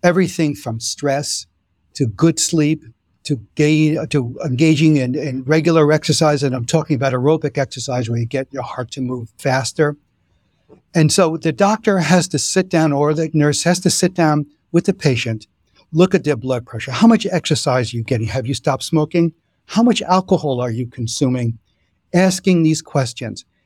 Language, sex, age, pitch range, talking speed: English, male, 60-79, 125-165 Hz, 180 wpm